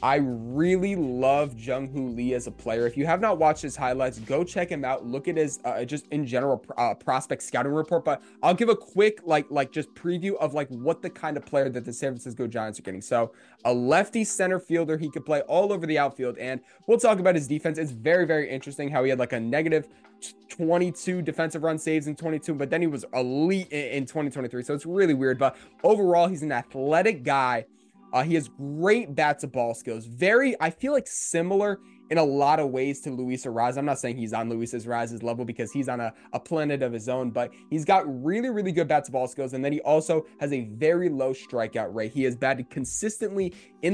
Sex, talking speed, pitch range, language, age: male, 230 wpm, 130-165 Hz, English, 20-39